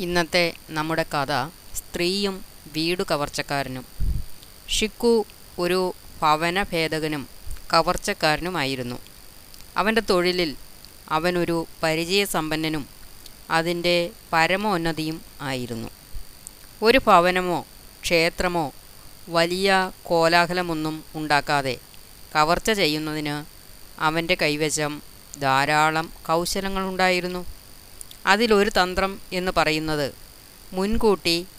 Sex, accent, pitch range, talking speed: female, native, 150-185 Hz, 65 wpm